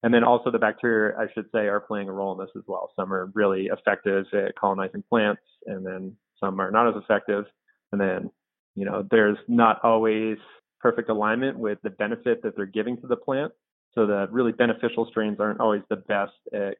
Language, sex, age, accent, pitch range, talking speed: English, male, 30-49, American, 100-110 Hz, 205 wpm